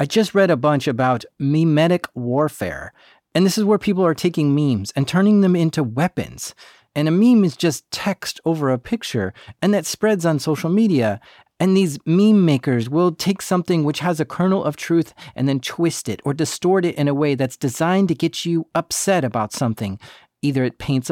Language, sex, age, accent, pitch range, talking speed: English, male, 40-59, American, 140-185 Hz, 200 wpm